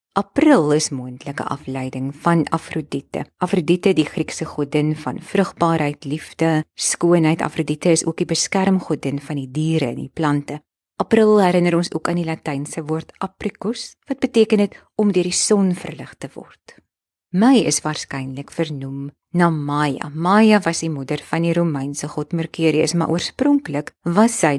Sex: female